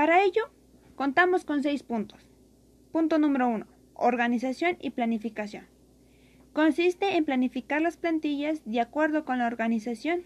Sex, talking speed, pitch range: female, 130 wpm, 240-300 Hz